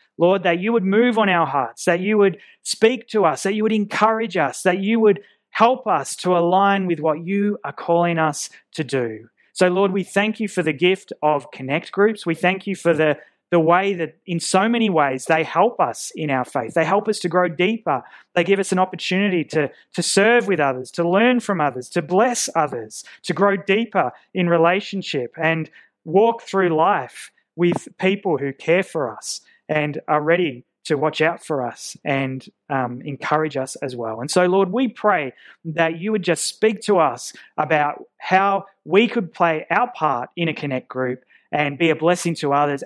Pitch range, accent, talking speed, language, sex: 150-195 Hz, Australian, 200 wpm, English, male